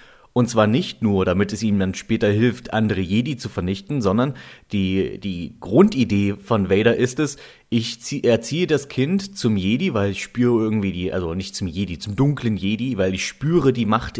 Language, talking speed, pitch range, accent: German, 190 wpm, 100-120 Hz, German